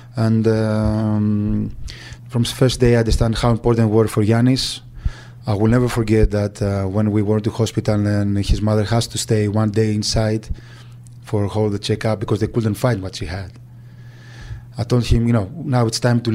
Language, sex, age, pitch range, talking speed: English, male, 20-39, 105-120 Hz, 200 wpm